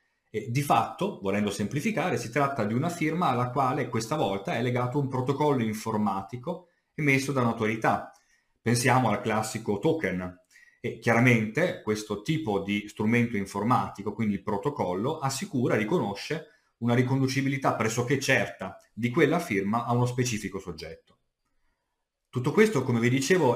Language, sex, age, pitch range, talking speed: Italian, male, 40-59, 105-135 Hz, 135 wpm